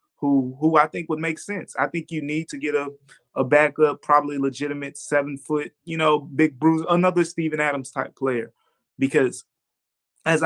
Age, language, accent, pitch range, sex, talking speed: 20-39, English, American, 145-190 Hz, male, 165 wpm